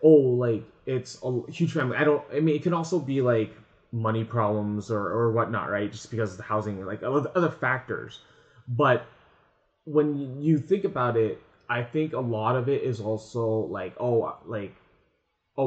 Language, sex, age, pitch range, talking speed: English, male, 20-39, 110-130 Hz, 185 wpm